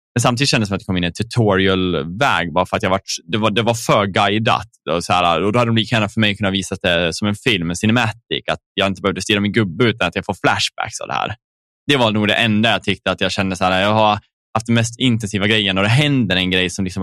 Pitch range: 90-110 Hz